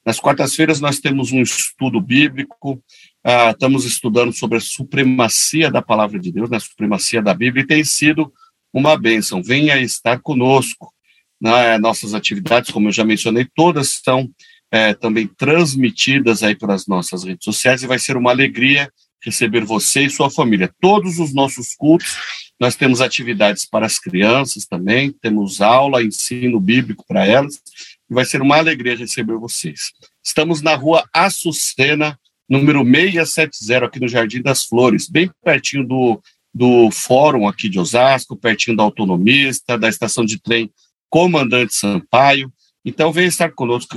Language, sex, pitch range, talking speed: Portuguese, male, 115-150 Hz, 155 wpm